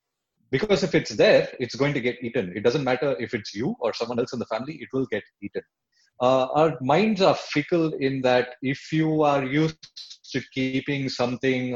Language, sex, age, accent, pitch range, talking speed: English, male, 30-49, Indian, 115-145 Hz, 200 wpm